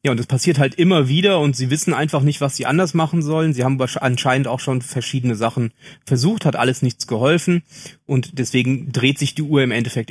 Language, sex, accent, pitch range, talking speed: German, male, German, 125-150 Hz, 220 wpm